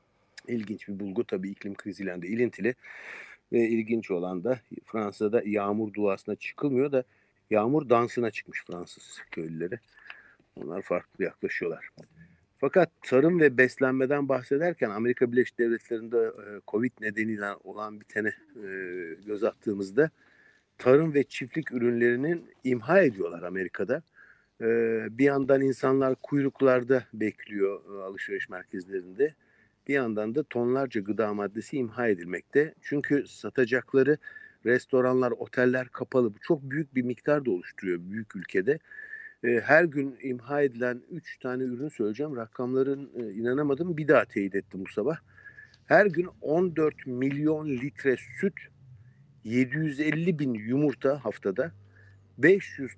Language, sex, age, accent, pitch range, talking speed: Turkish, male, 50-69, native, 110-145 Hz, 115 wpm